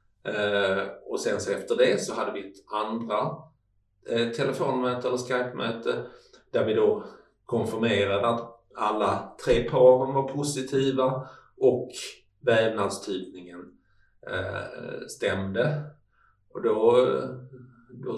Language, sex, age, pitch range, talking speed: Swedish, male, 50-69, 100-155 Hz, 105 wpm